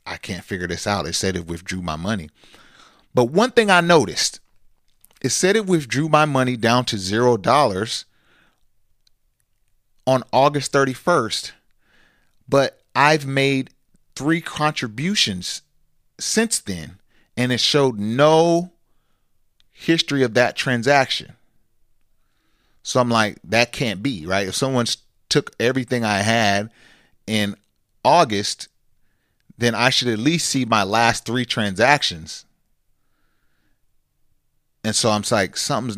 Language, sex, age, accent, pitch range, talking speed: English, male, 40-59, American, 100-135 Hz, 120 wpm